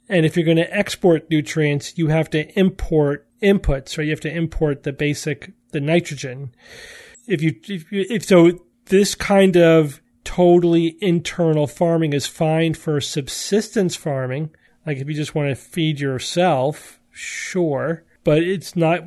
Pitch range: 145-175 Hz